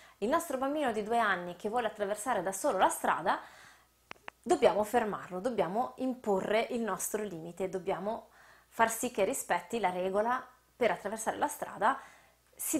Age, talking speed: 20-39, 150 wpm